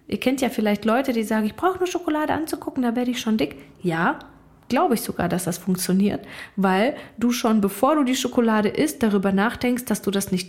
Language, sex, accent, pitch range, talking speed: German, female, German, 190-230 Hz, 215 wpm